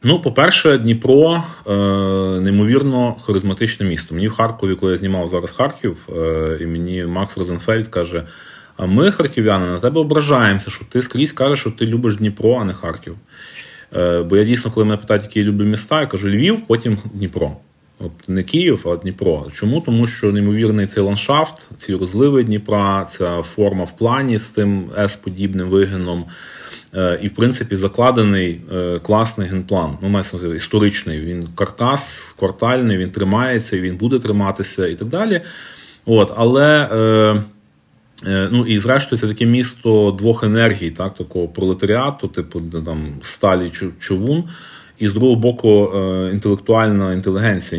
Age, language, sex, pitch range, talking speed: 30-49, Ukrainian, male, 95-115 Hz, 155 wpm